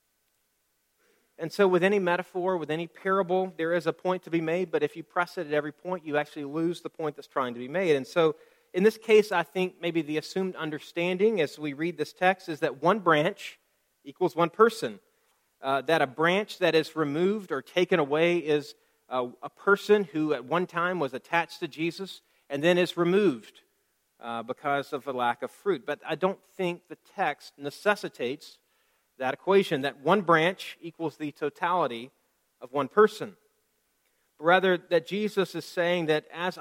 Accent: American